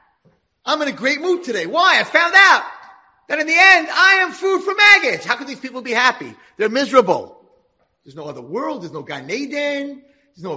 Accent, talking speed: American, 205 wpm